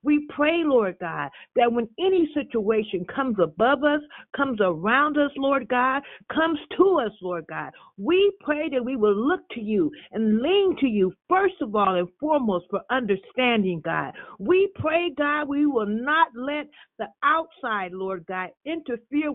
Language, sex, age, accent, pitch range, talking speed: English, female, 50-69, American, 230-325 Hz, 165 wpm